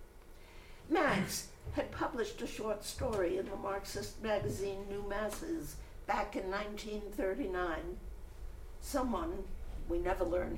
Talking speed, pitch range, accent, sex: 110 wpm, 170-255 Hz, American, female